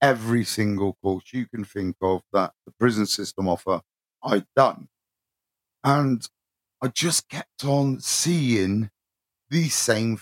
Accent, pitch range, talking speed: British, 110-140 Hz, 130 wpm